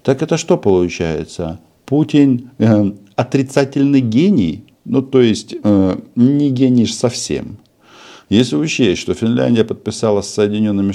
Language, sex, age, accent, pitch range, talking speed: Russian, male, 50-69, native, 80-110 Hz, 120 wpm